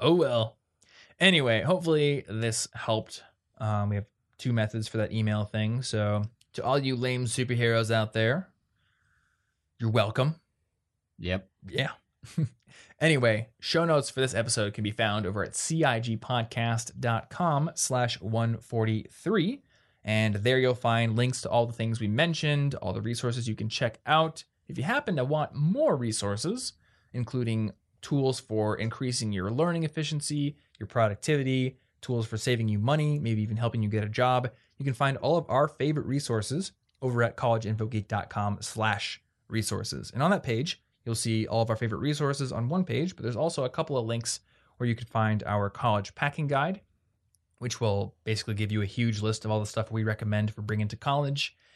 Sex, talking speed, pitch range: male, 170 wpm, 110-130 Hz